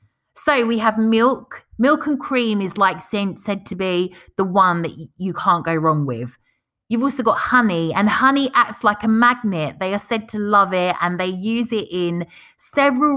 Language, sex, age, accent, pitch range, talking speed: English, female, 30-49, British, 185-240 Hz, 190 wpm